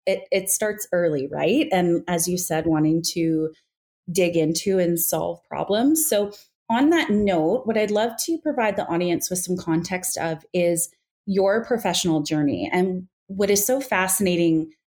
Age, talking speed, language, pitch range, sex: 30-49, 160 wpm, English, 165-205 Hz, female